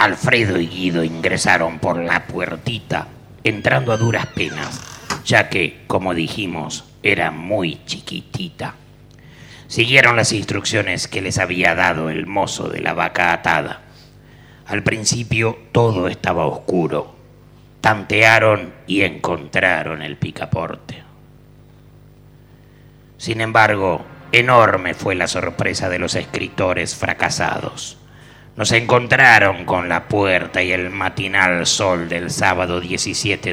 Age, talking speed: 50-69, 115 wpm